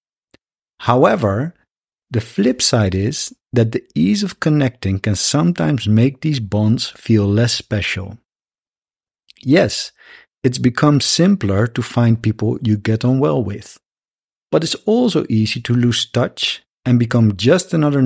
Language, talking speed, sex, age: English, 135 wpm, male, 50-69